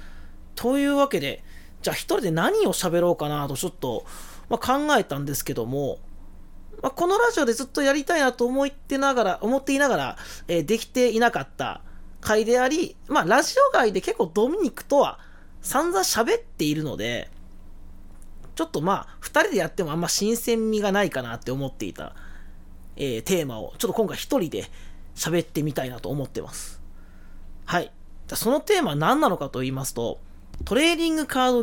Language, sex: Japanese, male